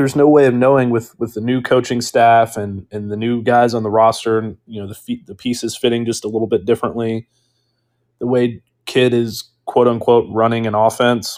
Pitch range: 110-125 Hz